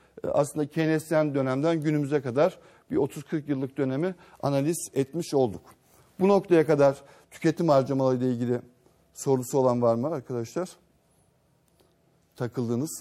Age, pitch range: 60-79, 120-155 Hz